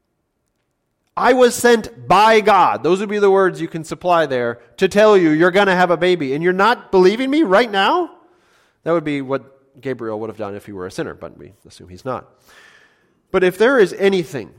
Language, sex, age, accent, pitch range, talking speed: English, male, 30-49, American, 120-175 Hz, 220 wpm